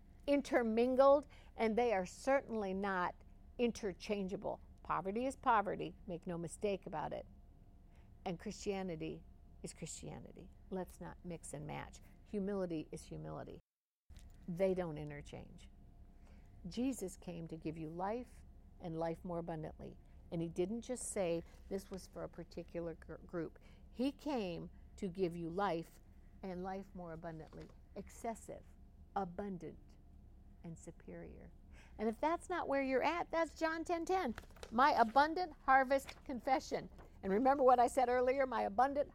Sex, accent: female, American